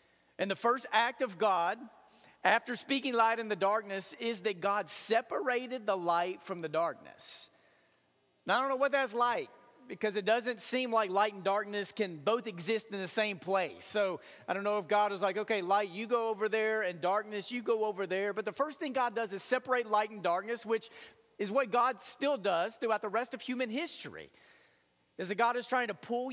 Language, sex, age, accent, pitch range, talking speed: English, male, 40-59, American, 205-245 Hz, 210 wpm